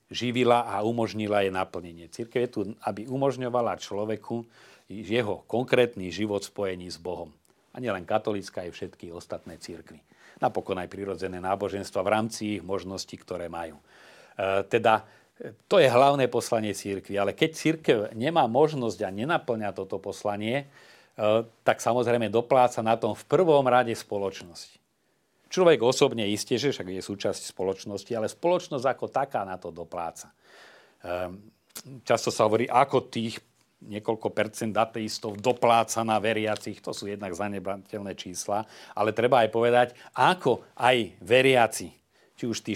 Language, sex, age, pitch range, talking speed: Slovak, male, 40-59, 100-120 Hz, 140 wpm